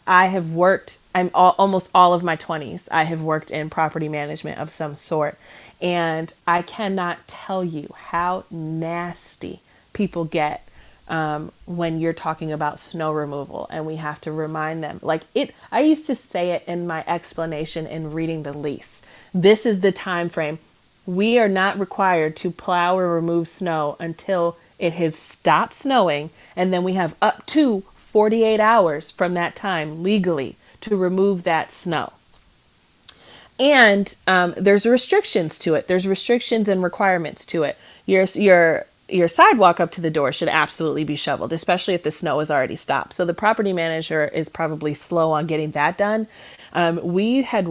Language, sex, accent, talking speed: English, female, American, 170 wpm